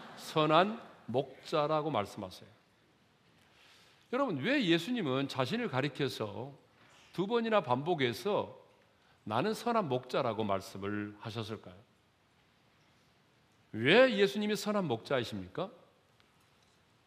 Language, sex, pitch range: Korean, male, 115-190 Hz